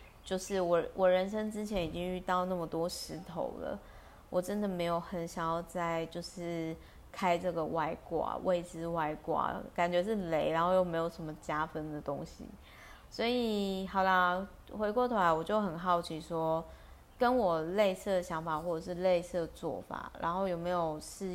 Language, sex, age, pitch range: Chinese, female, 20-39, 165-195 Hz